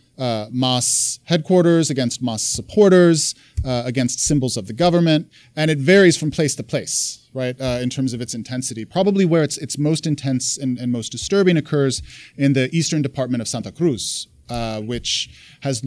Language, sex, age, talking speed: English, male, 30-49, 180 wpm